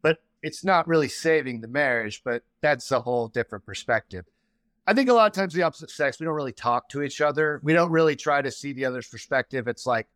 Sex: male